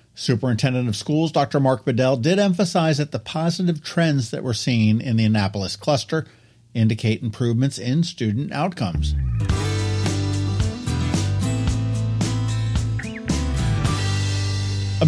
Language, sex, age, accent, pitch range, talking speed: English, male, 50-69, American, 110-170 Hz, 100 wpm